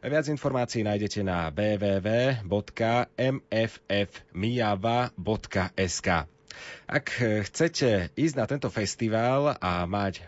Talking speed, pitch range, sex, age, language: 75 wpm, 95-125 Hz, male, 30-49, Slovak